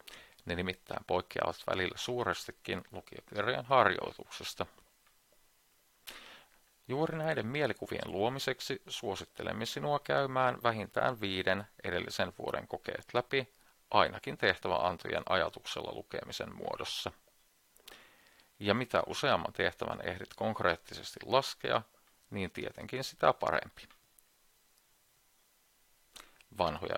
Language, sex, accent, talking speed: Finnish, male, native, 80 wpm